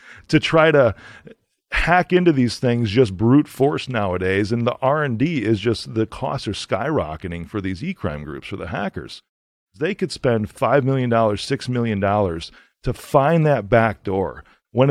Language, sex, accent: English, male, American